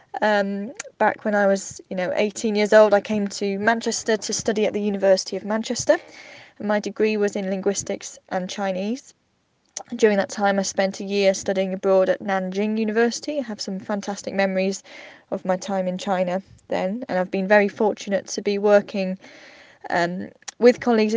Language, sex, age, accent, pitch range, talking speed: English, female, 10-29, British, 195-230 Hz, 180 wpm